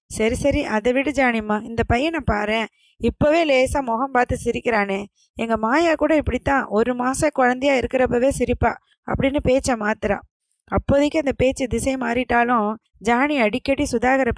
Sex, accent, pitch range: female, native, 220-265 Hz